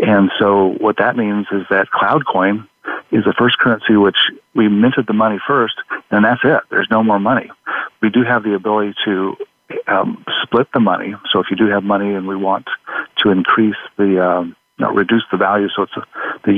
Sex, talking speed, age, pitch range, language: male, 200 wpm, 50-69, 100-110 Hz, English